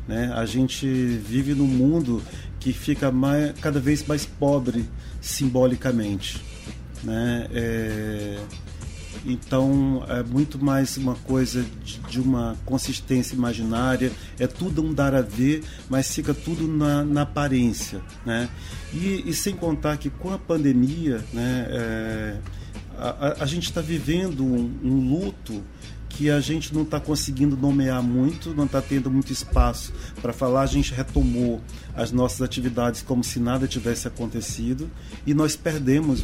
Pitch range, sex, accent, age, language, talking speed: 115-140 Hz, male, Brazilian, 40-59, Portuguese, 140 wpm